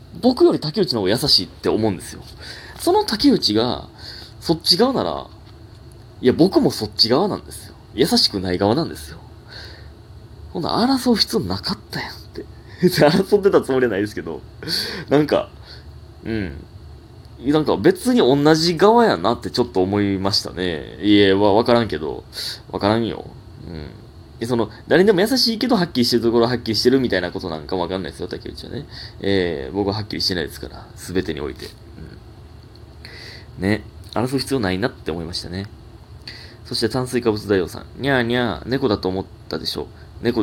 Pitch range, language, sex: 95-125 Hz, Japanese, male